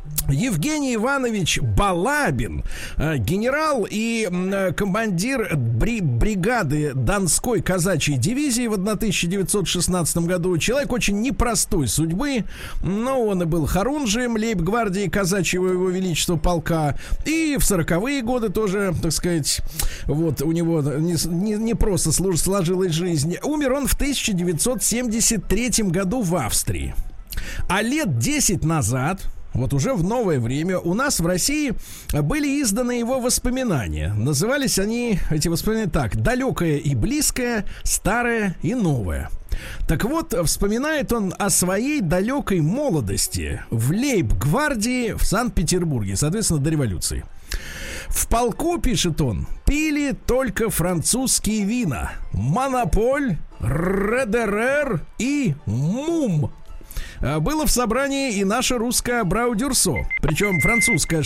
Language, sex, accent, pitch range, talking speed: Russian, male, native, 155-235 Hz, 115 wpm